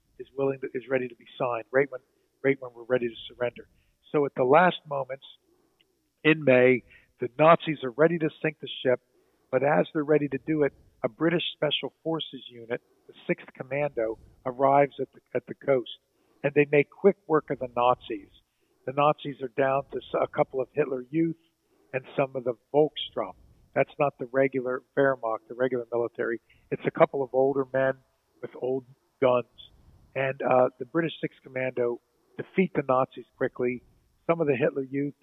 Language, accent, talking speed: English, American, 180 wpm